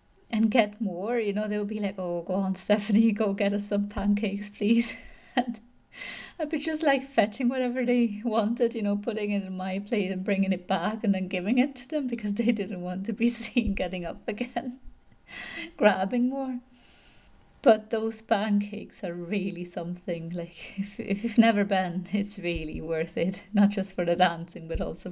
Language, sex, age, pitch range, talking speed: English, female, 30-49, 180-220 Hz, 190 wpm